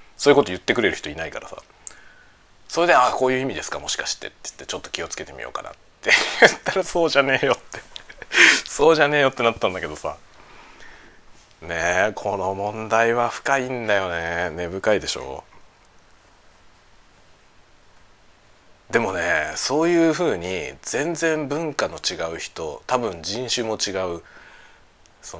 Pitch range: 95-150 Hz